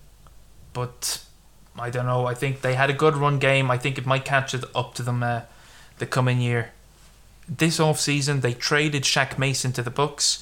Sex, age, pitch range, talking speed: male, 20-39, 115-135 Hz, 200 wpm